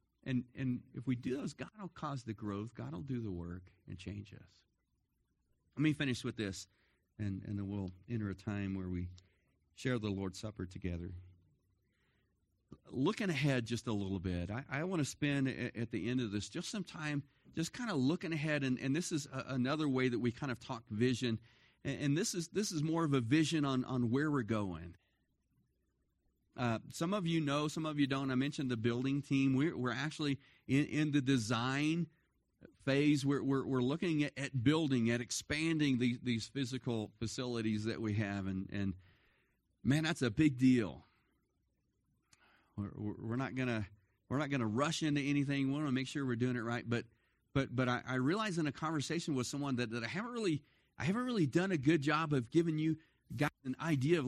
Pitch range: 110-145 Hz